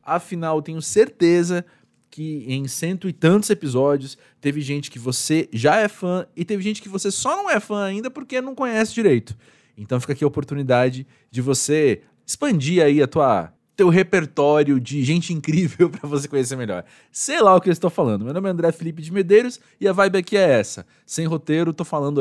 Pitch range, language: 145-205 Hz, Portuguese